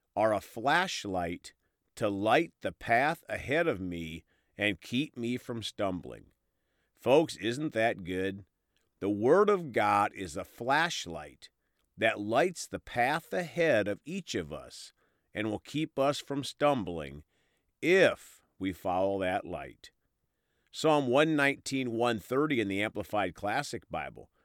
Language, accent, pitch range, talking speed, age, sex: English, American, 100-150 Hz, 135 wpm, 50-69, male